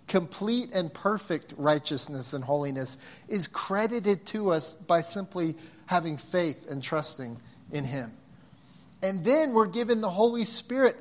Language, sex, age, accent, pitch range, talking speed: English, male, 40-59, American, 140-180 Hz, 140 wpm